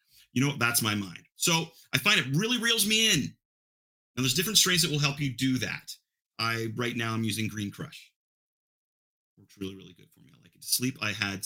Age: 30-49